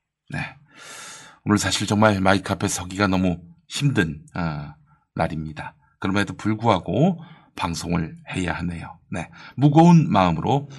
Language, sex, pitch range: English, male, 95-155 Hz